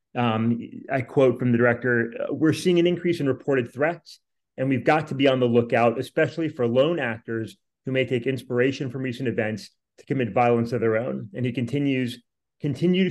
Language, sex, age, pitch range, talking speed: English, male, 30-49, 115-130 Hz, 190 wpm